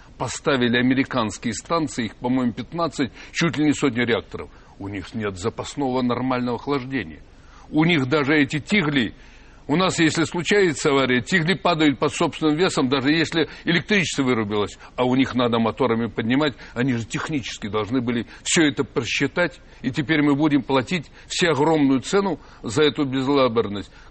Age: 60-79